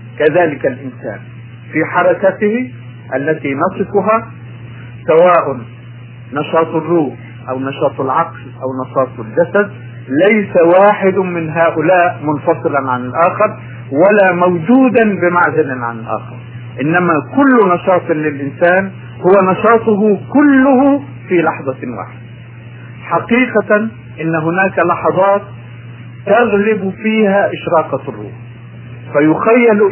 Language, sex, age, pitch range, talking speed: Arabic, male, 50-69, 120-195 Hz, 90 wpm